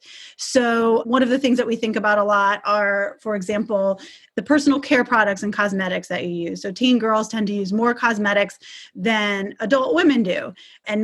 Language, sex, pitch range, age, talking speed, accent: English, female, 200-235 Hz, 30-49, 195 wpm, American